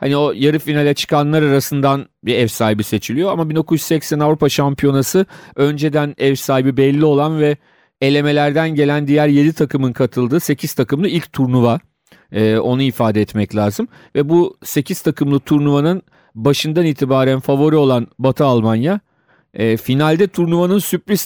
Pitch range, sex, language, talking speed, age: 120-150 Hz, male, Turkish, 140 wpm, 40-59